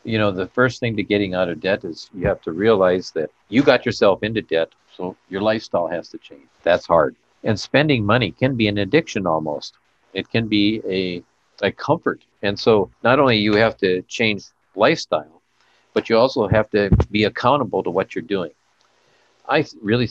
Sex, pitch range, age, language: male, 90-110 Hz, 50-69, English